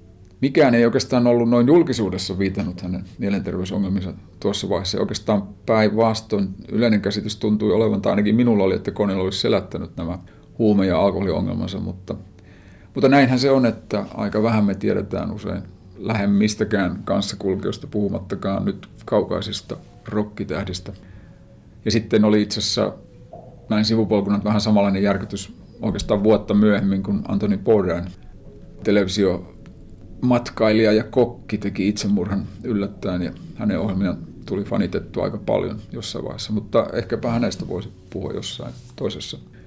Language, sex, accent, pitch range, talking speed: Finnish, male, native, 100-115 Hz, 130 wpm